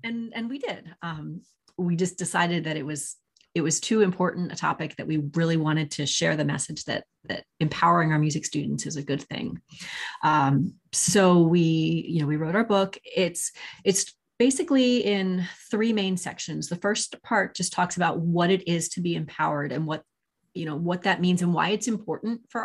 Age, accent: 30-49, American